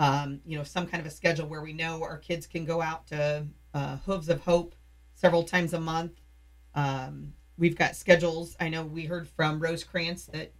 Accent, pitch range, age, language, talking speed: American, 150-170 Hz, 40-59, English, 205 wpm